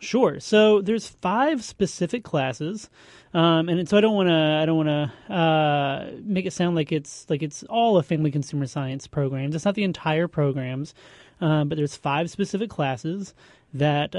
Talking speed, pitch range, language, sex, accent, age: 180 wpm, 145-185 Hz, English, male, American, 30-49